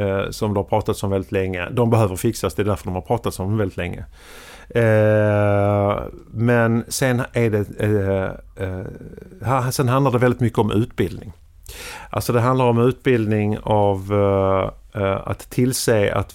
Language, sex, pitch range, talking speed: English, male, 95-115 Hz, 145 wpm